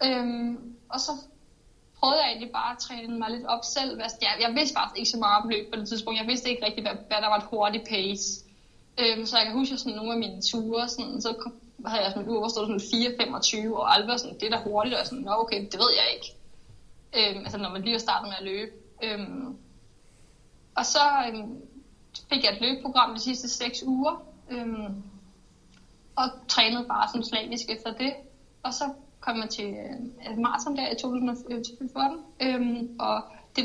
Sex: female